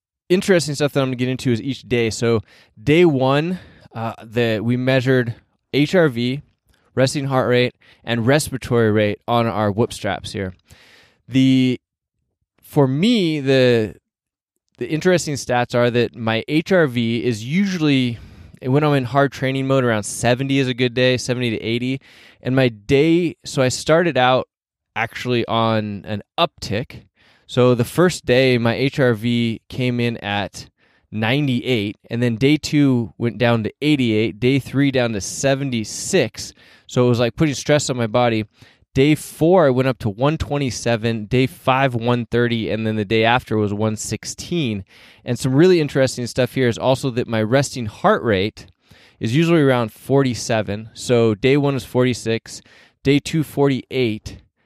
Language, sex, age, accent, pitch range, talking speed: English, male, 20-39, American, 110-135 Hz, 155 wpm